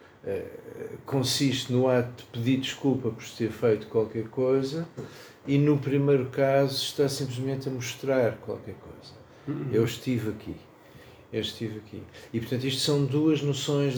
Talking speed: 140 wpm